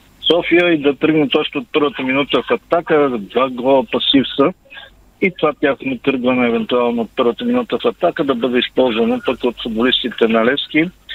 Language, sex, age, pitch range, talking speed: Bulgarian, male, 50-69, 115-145 Hz, 165 wpm